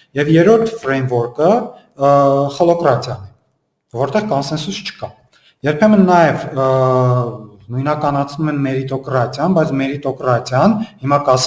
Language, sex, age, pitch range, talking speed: Russian, male, 40-59, 125-160 Hz, 90 wpm